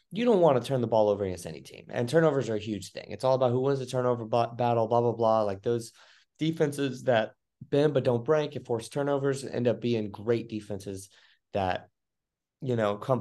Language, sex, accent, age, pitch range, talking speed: English, male, American, 30-49, 105-125 Hz, 225 wpm